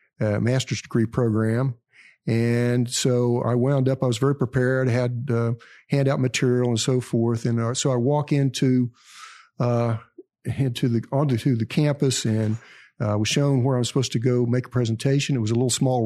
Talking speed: 190 wpm